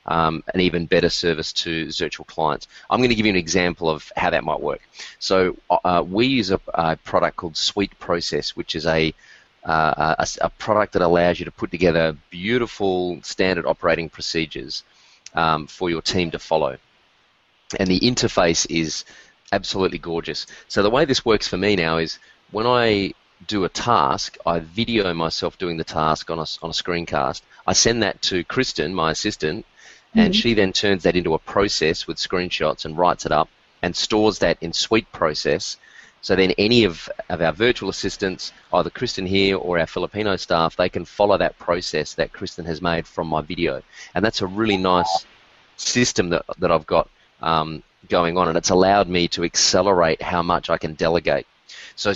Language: English